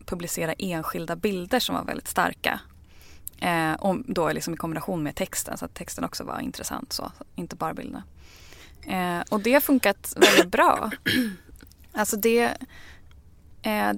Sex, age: female, 20-39